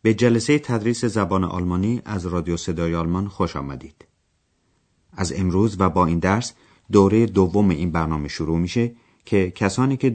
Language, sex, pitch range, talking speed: Persian, male, 85-115 Hz, 155 wpm